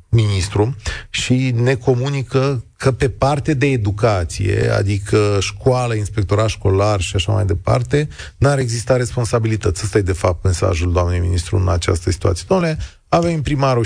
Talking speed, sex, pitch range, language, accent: 145 wpm, male, 100-155 Hz, Romanian, native